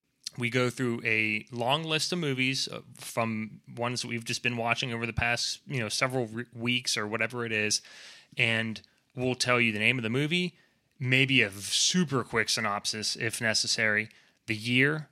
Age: 20-39